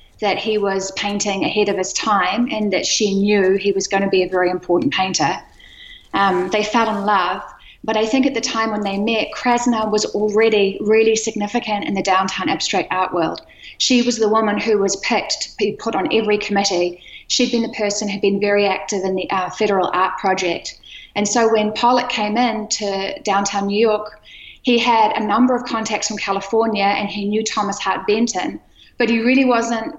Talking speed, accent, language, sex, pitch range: 200 wpm, Australian, English, female, 200-230 Hz